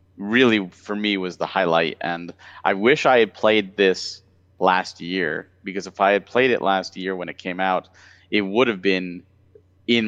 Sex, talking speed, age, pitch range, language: male, 190 wpm, 30-49, 90-100 Hz, English